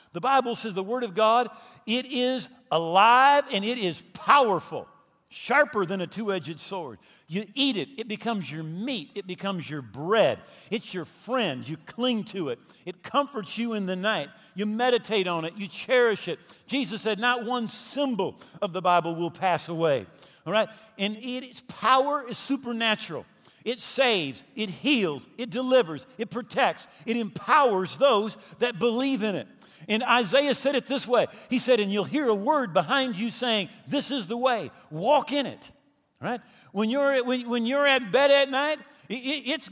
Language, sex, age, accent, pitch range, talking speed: English, male, 50-69, American, 200-270 Hz, 175 wpm